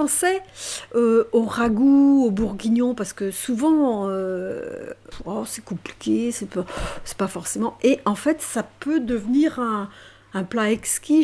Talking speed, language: 145 wpm, French